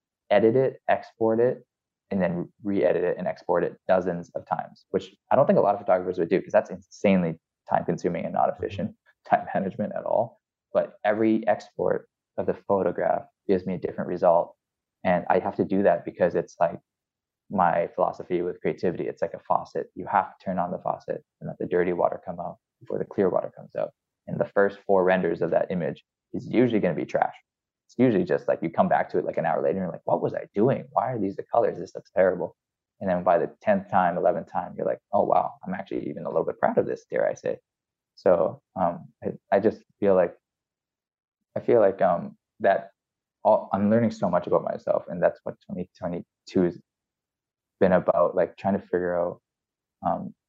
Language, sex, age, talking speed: English, male, 20-39, 215 wpm